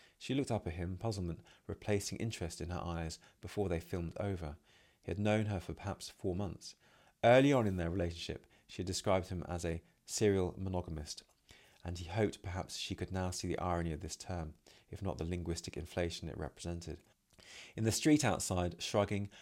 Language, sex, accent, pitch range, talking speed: English, male, British, 85-100 Hz, 190 wpm